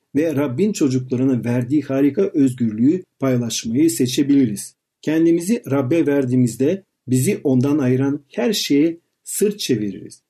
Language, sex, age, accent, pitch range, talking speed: Turkish, male, 50-69, native, 130-170 Hz, 105 wpm